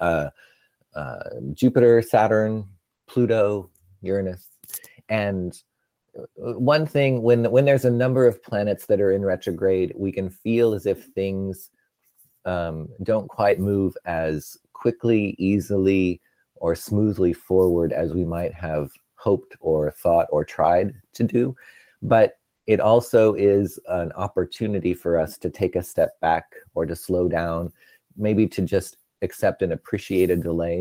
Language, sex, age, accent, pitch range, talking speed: English, male, 30-49, American, 85-100 Hz, 140 wpm